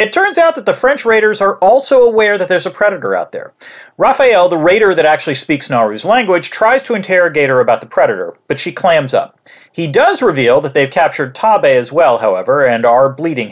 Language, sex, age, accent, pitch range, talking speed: English, male, 40-59, American, 165-255 Hz, 215 wpm